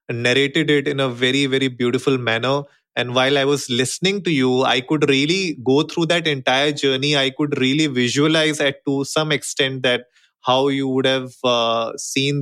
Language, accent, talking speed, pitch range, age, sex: English, Indian, 185 wpm, 130-160 Hz, 20-39, male